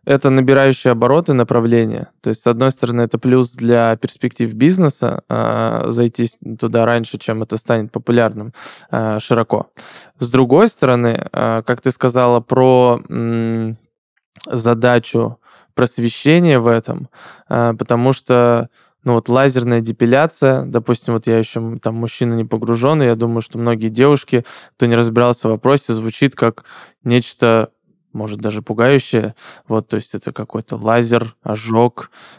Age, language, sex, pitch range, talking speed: 20-39, Russian, male, 115-125 Hz, 140 wpm